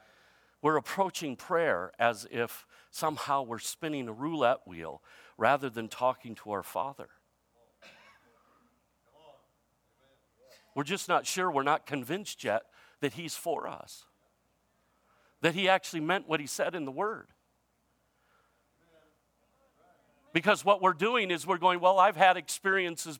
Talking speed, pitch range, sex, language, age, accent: 130 wpm, 145-185 Hz, male, English, 50-69, American